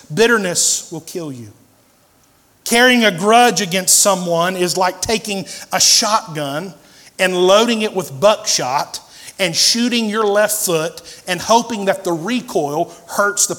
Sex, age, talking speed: male, 50-69, 135 wpm